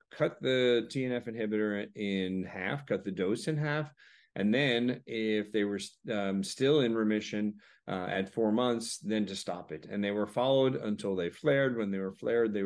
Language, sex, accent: English, male, American